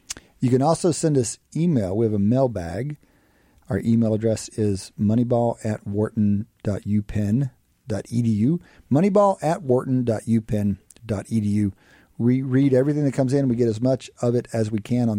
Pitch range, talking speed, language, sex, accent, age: 110-150 Hz, 125 wpm, English, male, American, 40-59